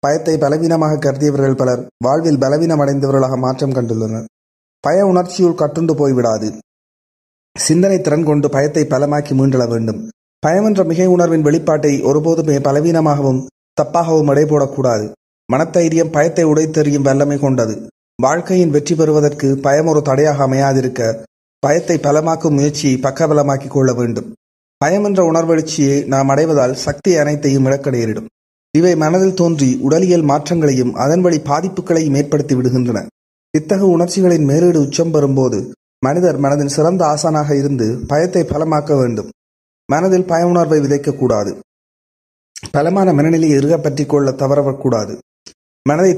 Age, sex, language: 30-49, male, Tamil